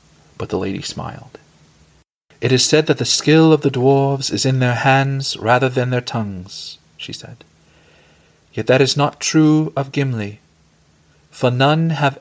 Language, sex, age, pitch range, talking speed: English, male, 40-59, 95-135 Hz, 160 wpm